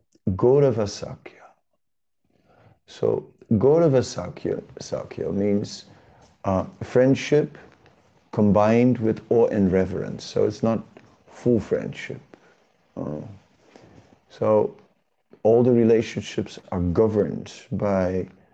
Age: 50-69